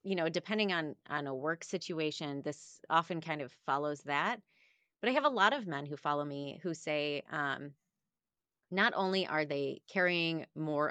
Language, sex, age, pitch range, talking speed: English, female, 30-49, 145-200 Hz, 180 wpm